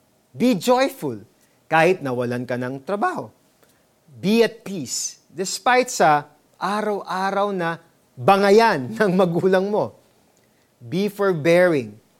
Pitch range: 145-210 Hz